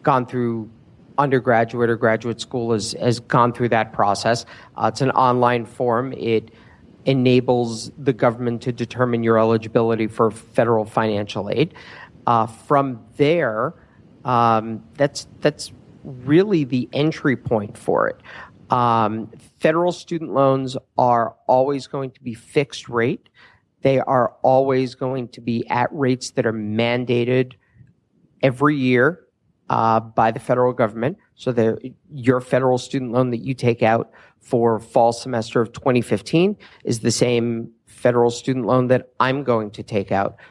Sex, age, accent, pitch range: male, 50-69, American, 110-130 Hz